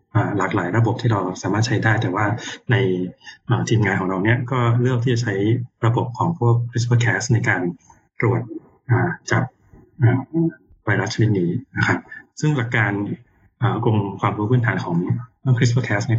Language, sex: Thai, male